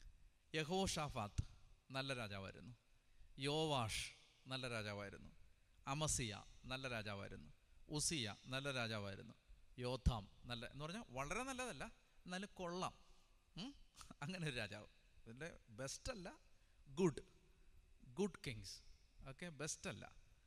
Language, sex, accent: Malayalam, male, native